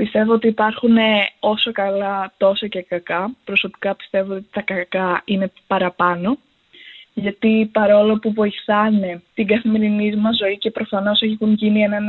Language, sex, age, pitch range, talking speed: Greek, female, 20-39, 200-250 Hz, 140 wpm